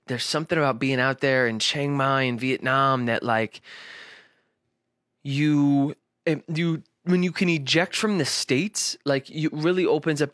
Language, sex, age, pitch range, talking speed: English, male, 20-39, 120-150 Hz, 155 wpm